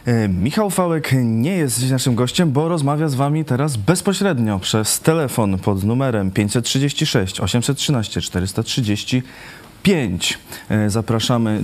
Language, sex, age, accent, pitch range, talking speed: Polish, male, 20-39, native, 95-120 Hz, 110 wpm